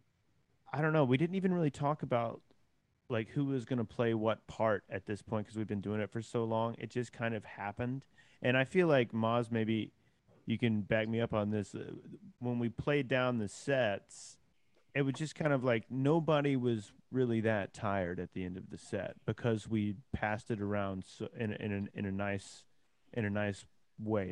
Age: 30-49